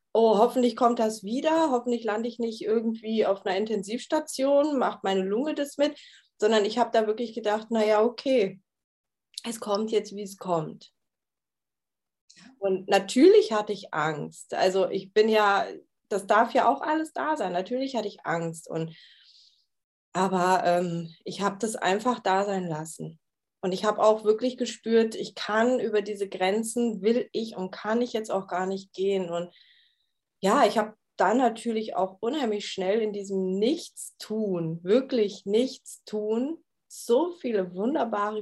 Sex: female